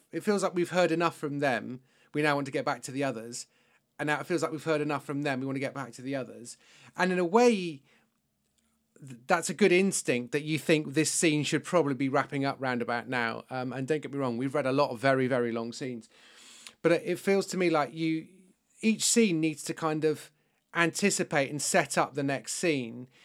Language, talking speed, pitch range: English, 235 wpm, 135-180 Hz